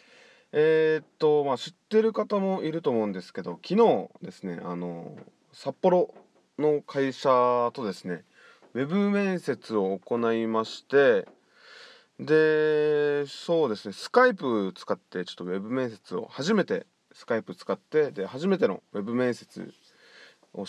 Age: 20-39